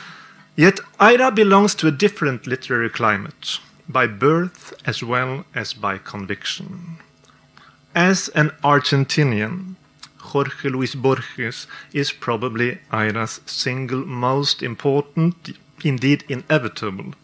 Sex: male